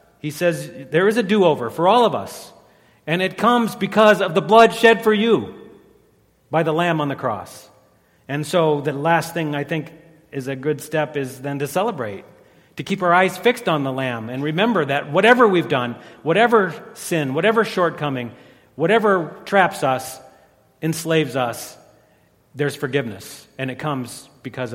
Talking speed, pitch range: 170 wpm, 130-180 Hz